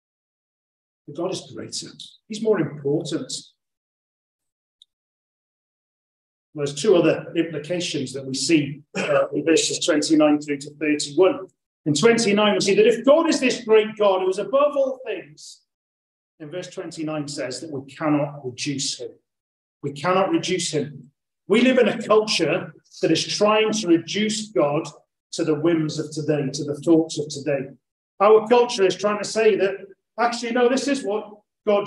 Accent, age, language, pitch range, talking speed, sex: British, 40-59, English, 145-215 Hz, 155 wpm, male